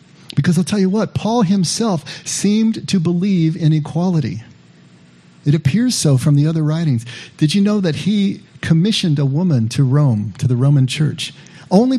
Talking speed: 170 wpm